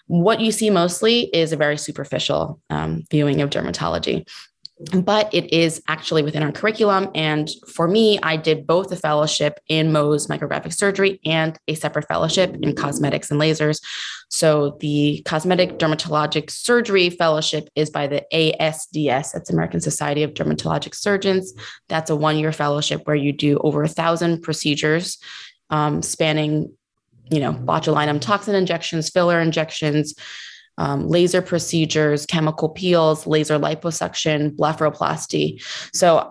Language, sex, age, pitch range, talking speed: English, female, 20-39, 150-170 Hz, 140 wpm